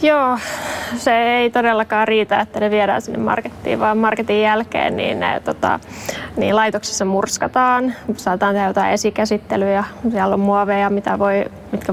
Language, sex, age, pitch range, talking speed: Finnish, female, 20-39, 200-220 Hz, 145 wpm